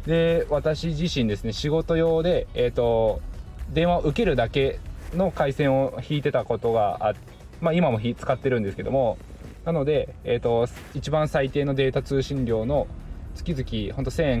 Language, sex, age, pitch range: Japanese, male, 20-39, 80-130 Hz